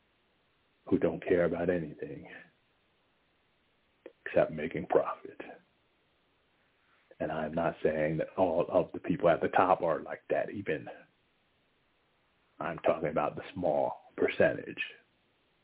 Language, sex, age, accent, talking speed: English, male, 60-79, American, 115 wpm